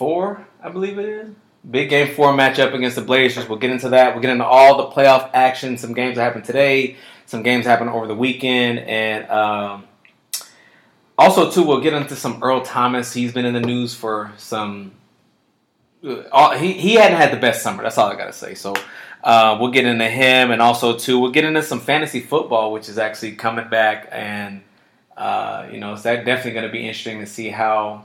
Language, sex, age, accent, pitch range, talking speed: English, male, 20-39, American, 110-125 Hz, 210 wpm